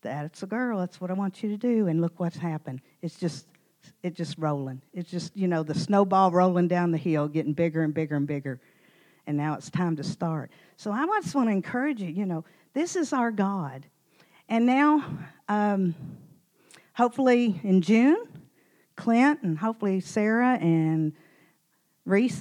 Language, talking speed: English, 175 wpm